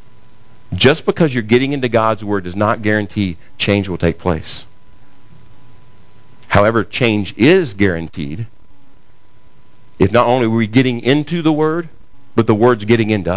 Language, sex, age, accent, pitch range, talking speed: English, male, 50-69, American, 105-150 Hz, 145 wpm